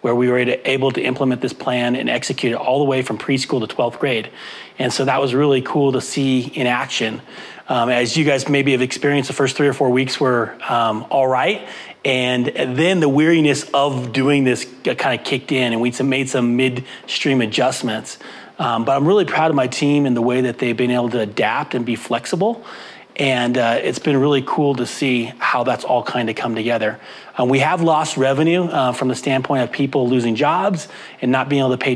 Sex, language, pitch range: male, English, 125-140 Hz